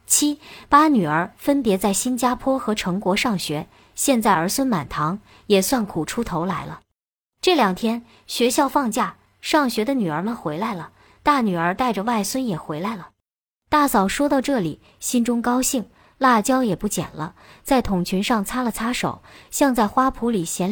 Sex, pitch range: male, 190-260 Hz